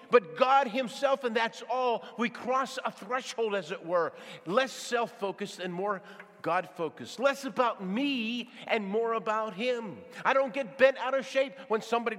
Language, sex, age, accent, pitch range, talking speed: English, male, 50-69, American, 170-255 Hz, 165 wpm